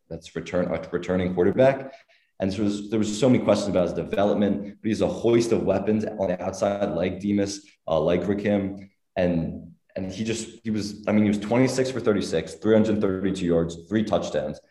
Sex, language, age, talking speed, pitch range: male, English, 20-39, 190 wpm, 90-105 Hz